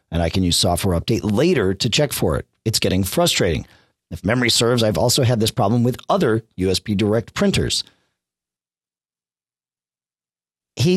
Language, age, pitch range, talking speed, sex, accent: English, 40-59, 100-145 Hz, 155 wpm, male, American